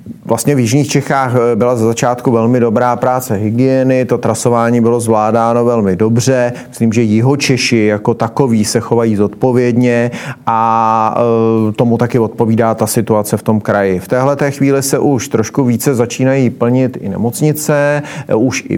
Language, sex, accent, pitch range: Czech, male, native, 110-125 Hz